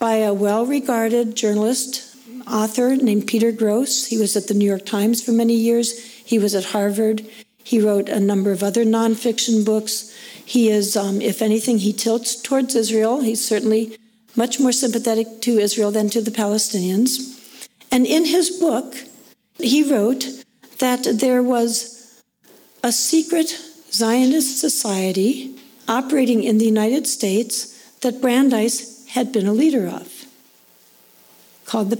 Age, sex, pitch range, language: 60-79, female, 220-255 Hz, English